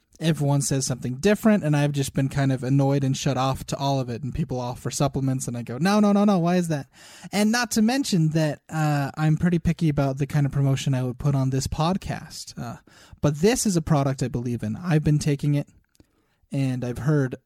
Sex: male